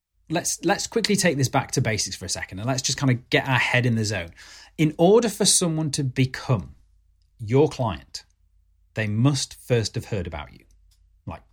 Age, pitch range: 30-49, 95-140 Hz